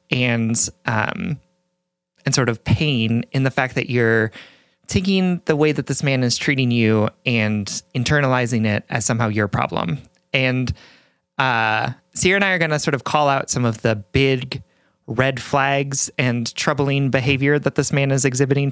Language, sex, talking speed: English, male, 170 wpm